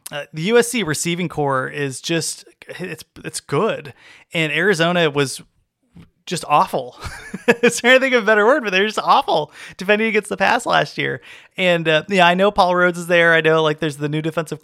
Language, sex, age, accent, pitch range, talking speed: English, male, 30-49, American, 145-175 Hz, 195 wpm